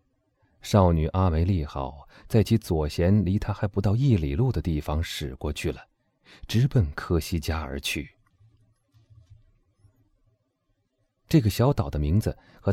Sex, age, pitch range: male, 30-49, 85-115 Hz